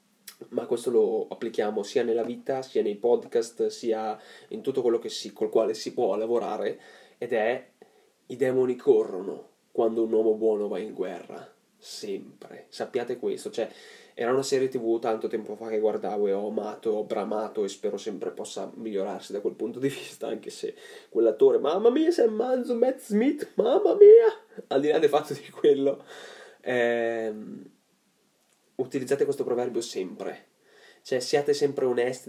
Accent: native